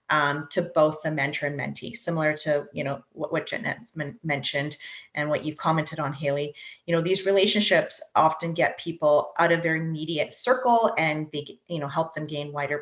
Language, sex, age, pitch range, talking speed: English, female, 30-49, 145-165 Hz, 190 wpm